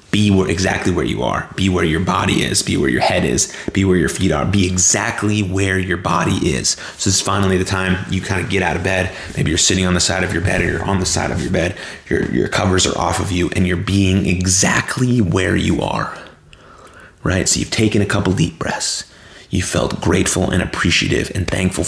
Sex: male